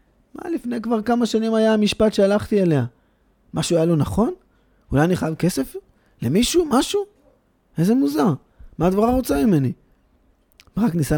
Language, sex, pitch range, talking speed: Hebrew, male, 130-200 Hz, 150 wpm